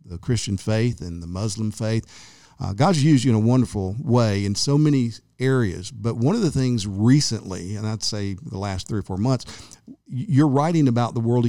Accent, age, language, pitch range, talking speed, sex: American, 50-69, English, 100-125 Hz, 205 wpm, male